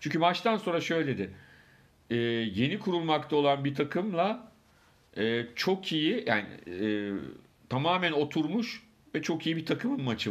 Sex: male